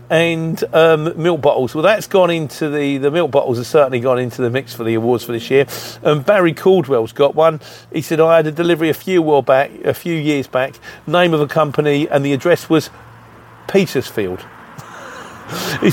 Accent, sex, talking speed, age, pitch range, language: British, male, 205 wpm, 40-59, 135-180 Hz, English